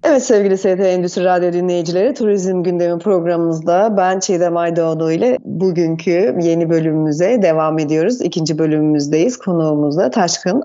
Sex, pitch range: female, 170-220 Hz